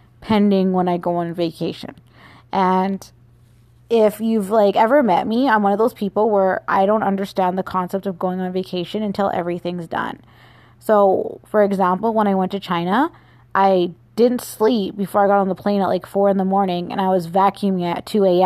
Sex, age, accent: female, 20-39, American